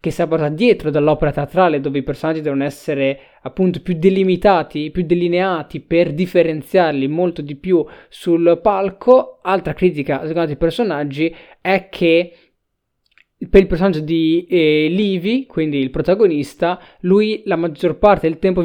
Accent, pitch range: native, 155-190 Hz